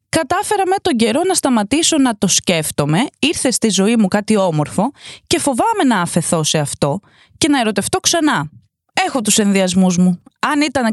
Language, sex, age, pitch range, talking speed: Greek, female, 20-39, 175-285 Hz, 170 wpm